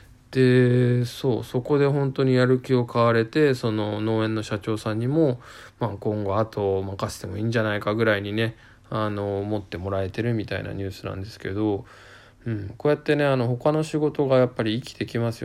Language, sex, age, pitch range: Japanese, male, 20-39, 105-130 Hz